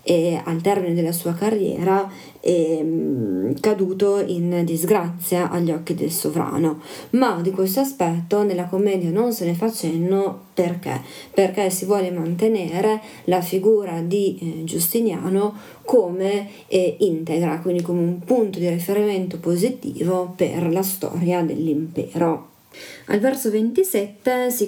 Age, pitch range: 30-49, 170-210 Hz